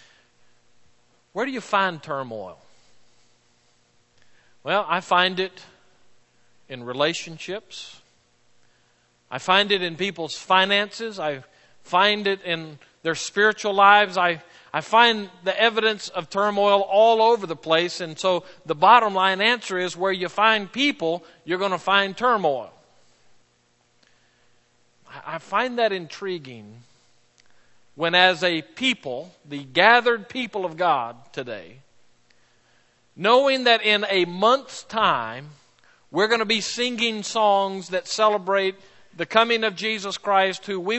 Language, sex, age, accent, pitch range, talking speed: English, male, 40-59, American, 145-205 Hz, 125 wpm